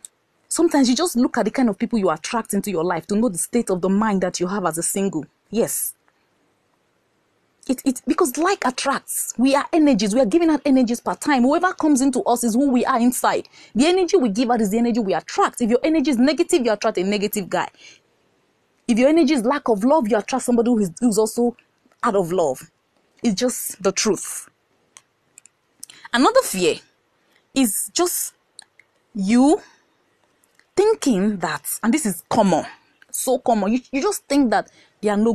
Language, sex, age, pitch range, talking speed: English, female, 30-49, 195-275 Hz, 190 wpm